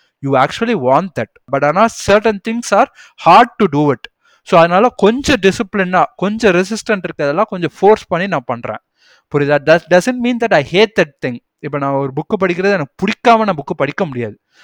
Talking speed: 185 wpm